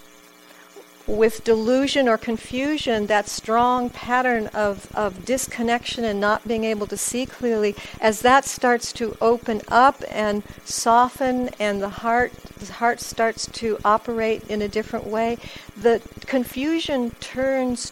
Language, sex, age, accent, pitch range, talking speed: English, female, 60-79, American, 200-255 Hz, 135 wpm